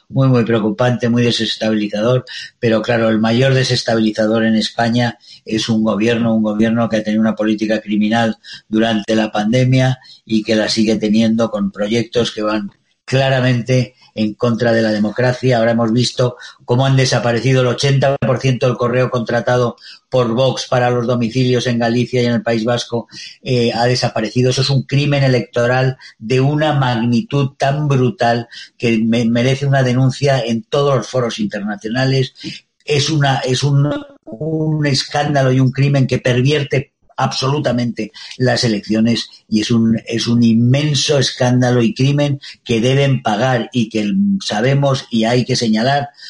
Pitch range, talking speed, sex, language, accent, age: 115-130 Hz, 155 wpm, male, Spanish, Spanish, 40-59